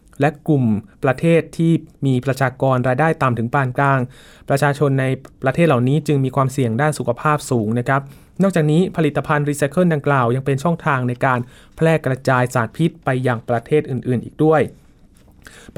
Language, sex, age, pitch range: Thai, male, 20-39, 135-160 Hz